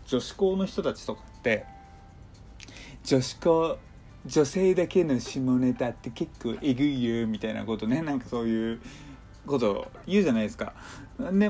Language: Japanese